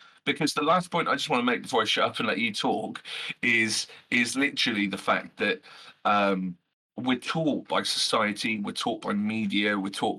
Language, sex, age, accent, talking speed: English, male, 30-49, British, 200 wpm